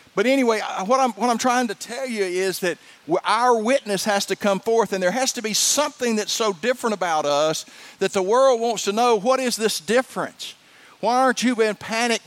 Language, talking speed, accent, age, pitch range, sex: English, 215 wpm, American, 50-69, 200-245 Hz, male